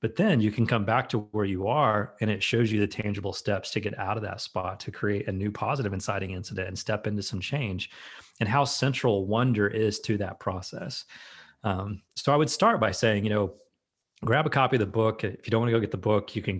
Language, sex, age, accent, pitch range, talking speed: English, male, 30-49, American, 100-115 Hz, 250 wpm